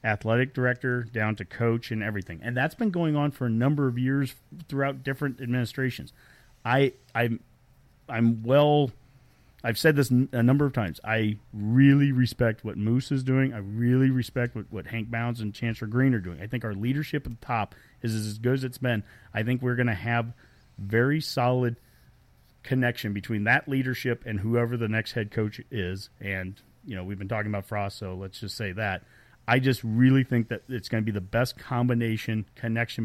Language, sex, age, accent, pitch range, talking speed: English, male, 40-59, American, 110-130 Hz, 200 wpm